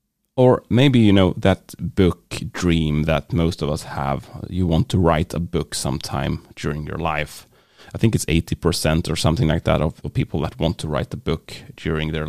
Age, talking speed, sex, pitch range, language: 30-49, 200 wpm, male, 80-105 Hz, English